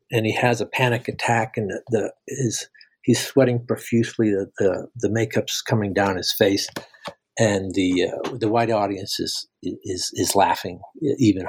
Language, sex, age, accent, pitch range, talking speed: English, male, 60-79, American, 110-125 Hz, 165 wpm